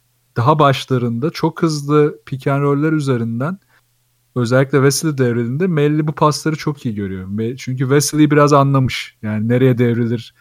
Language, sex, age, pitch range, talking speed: Turkish, male, 40-59, 125-150 Hz, 140 wpm